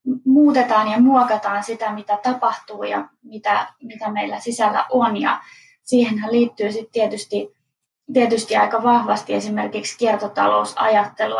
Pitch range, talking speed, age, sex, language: 190-240 Hz, 115 wpm, 20-39, female, Finnish